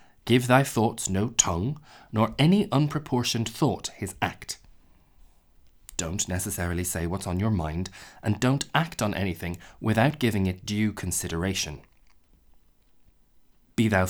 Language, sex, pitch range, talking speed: English, male, 90-125 Hz, 130 wpm